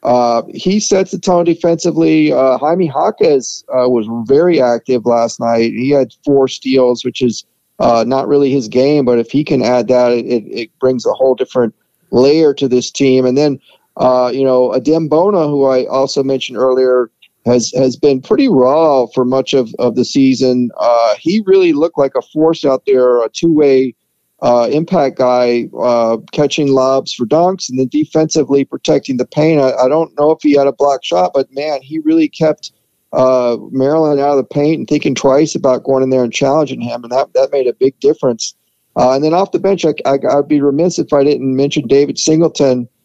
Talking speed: 200 wpm